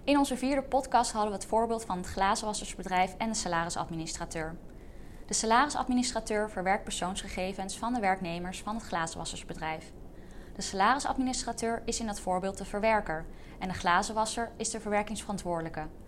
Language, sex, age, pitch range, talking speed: Dutch, female, 20-39, 175-225 Hz, 140 wpm